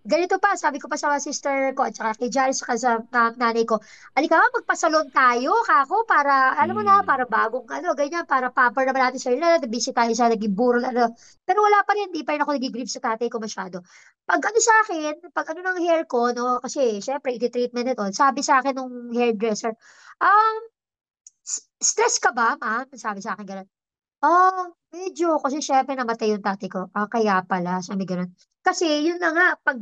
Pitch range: 240-340 Hz